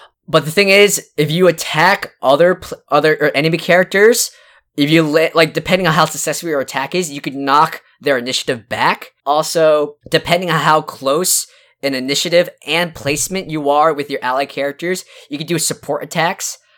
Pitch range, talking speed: 140-175 Hz, 180 wpm